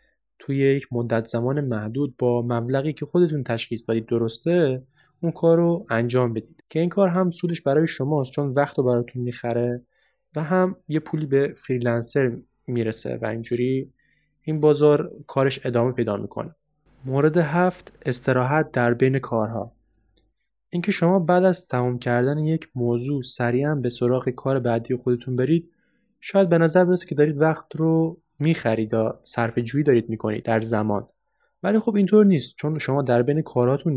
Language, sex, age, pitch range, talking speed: Persian, male, 20-39, 120-155 Hz, 165 wpm